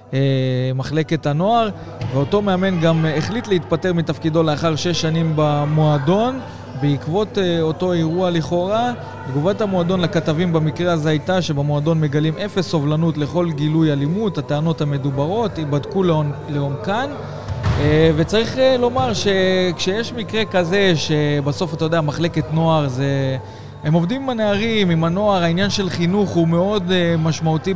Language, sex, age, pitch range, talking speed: Hebrew, male, 20-39, 155-185 Hz, 125 wpm